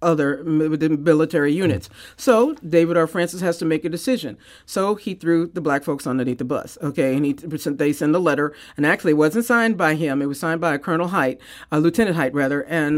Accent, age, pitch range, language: American, 50-69, 155-205 Hz, English